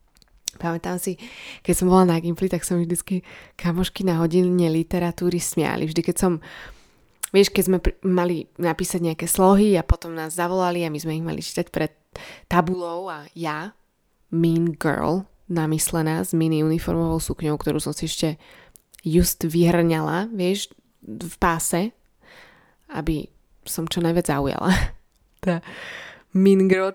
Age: 20-39